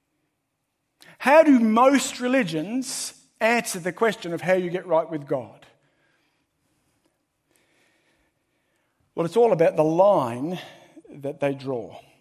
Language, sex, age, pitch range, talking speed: English, male, 50-69, 150-200 Hz, 115 wpm